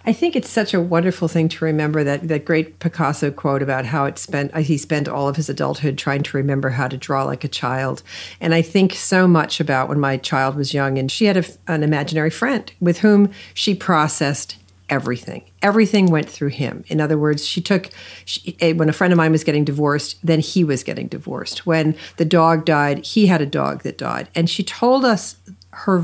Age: 50-69